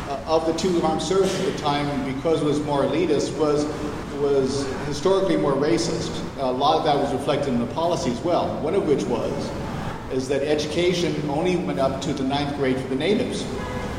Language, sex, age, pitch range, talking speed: English, male, 50-69, 130-160 Hz, 195 wpm